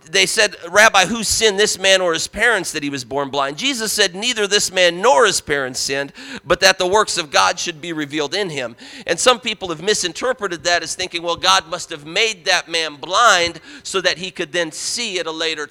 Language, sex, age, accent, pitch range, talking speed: English, male, 40-59, American, 175-225 Hz, 230 wpm